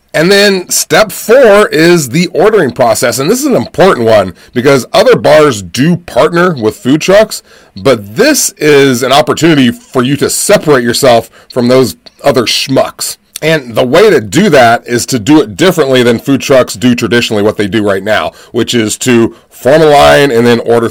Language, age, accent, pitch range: English, 30-49, American, 120-175 Hz